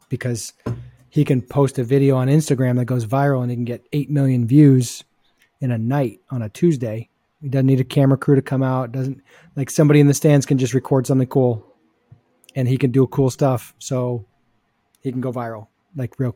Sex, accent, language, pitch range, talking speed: male, American, English, 120-145 Hz, 210 wpm